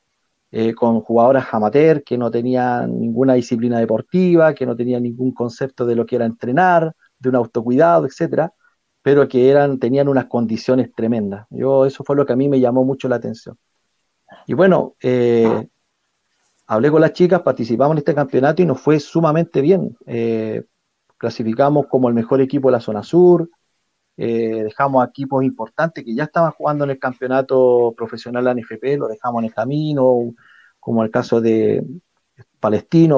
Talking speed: 170 wpm